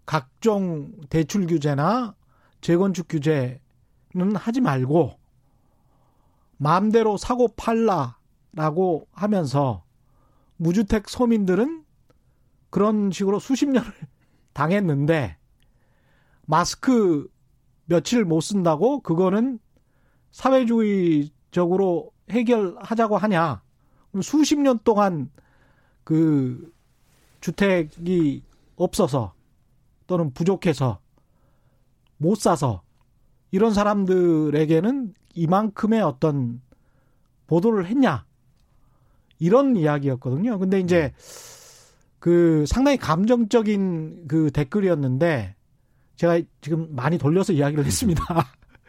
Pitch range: 135-200 Hz